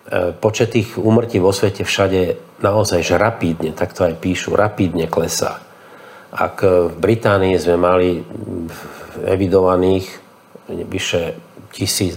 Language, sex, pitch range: Slovak, male, 85-100 Hz